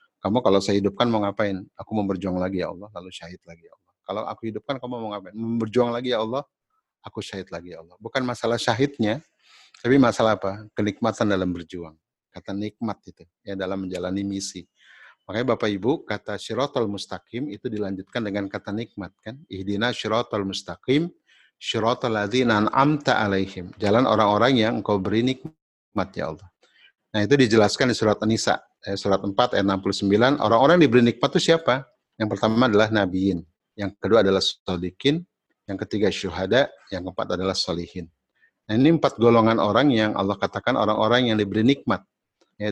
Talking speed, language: 165 wpm, Indonesian